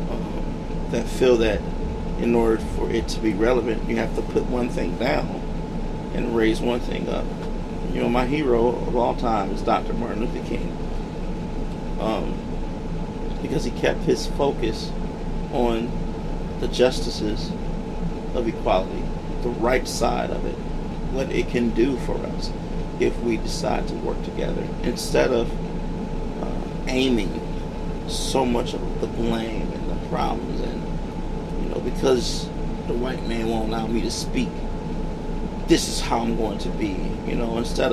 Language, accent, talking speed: English, American, 145 wpm